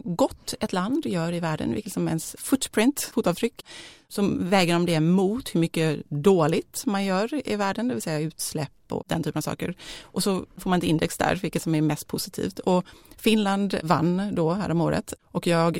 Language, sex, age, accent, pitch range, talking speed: Swedish, female, 30-49, native, 150-190 Hz, 200 wpm